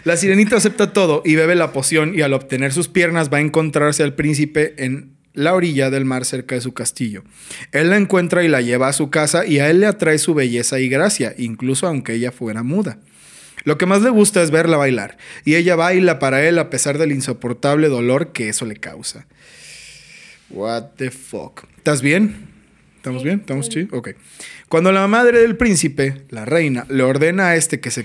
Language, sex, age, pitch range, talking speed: Spanish, male, 30-49, 130-170 Hz, 205 wpm